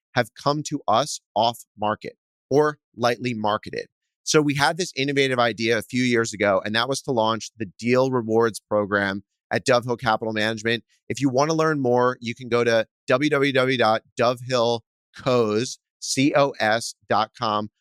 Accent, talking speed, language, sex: American, 150 wpm, English, male